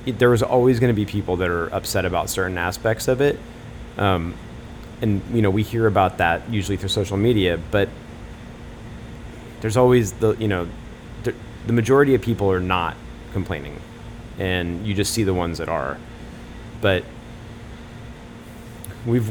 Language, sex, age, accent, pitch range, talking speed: English, male, 30-49, American, 95-115 Hz, 160 wpm